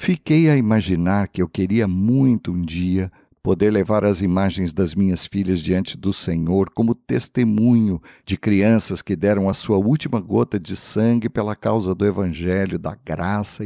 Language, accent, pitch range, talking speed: Portuguese, Brazilian, 90-115 Hz, 165 wpm